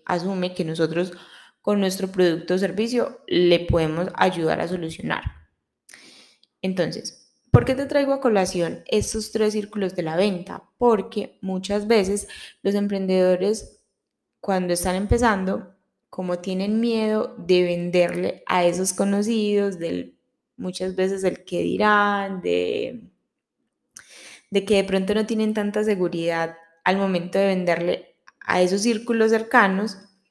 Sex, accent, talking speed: female, Colombian, 125 wpm